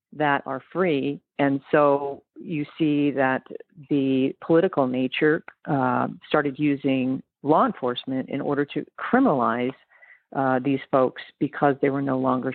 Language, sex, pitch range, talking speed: English, female, 135-165 Hz, 135 wpm